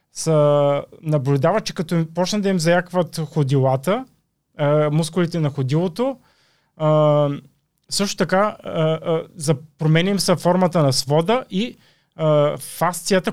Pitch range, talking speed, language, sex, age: 140-180 Hz, 90 wpm, Bulgarian, male, 30-49